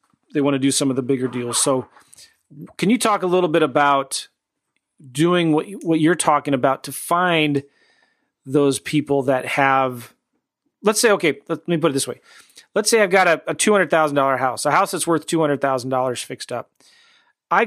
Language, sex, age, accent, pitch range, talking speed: English, male, 40-59, American, 130-165 Hz, 180 wpm